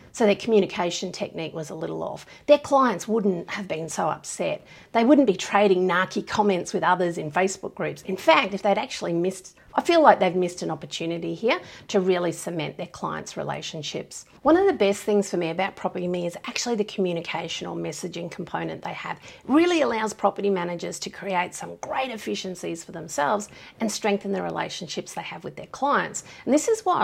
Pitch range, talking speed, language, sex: 180-225 Hz, 200 wpm, English, female